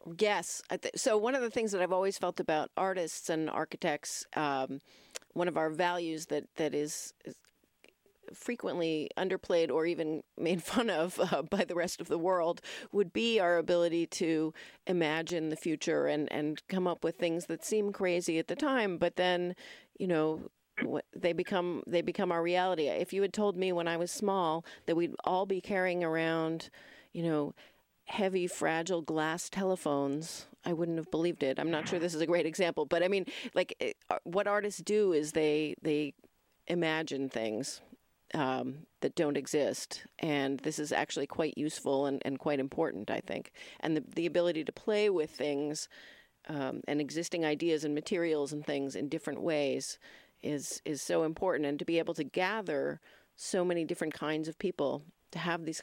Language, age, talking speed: English, 40-59, 180 wpm